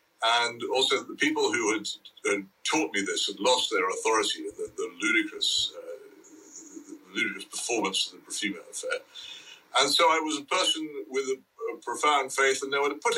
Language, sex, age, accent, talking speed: English, male, 60-79, British, 175 wpm